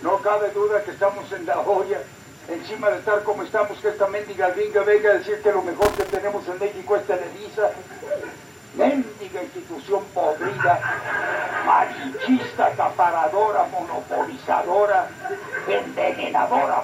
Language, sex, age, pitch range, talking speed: Spanish, male, 60-79, 200-295 Hz, 130 wpm